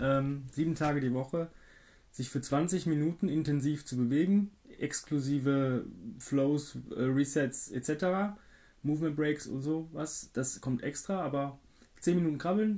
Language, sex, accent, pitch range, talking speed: German, male, German, 120-150 Hz, 120 wpm